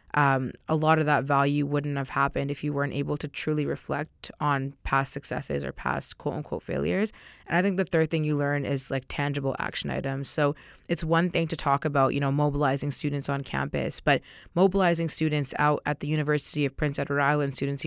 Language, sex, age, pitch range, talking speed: English, female, 20-39, 140-155 Hz, 205 wpm